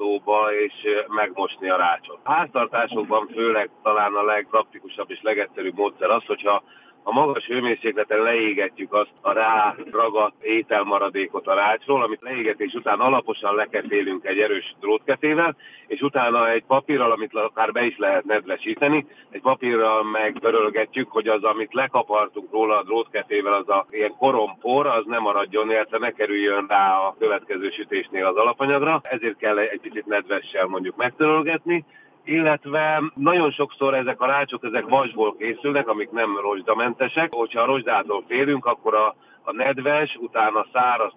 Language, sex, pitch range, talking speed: Hungarian, male, 105-140 Hz, 145 wpm